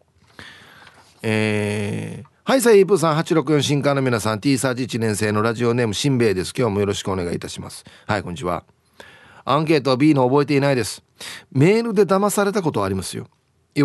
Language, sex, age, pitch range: Japanese, male, 40-59, 120-165 Hz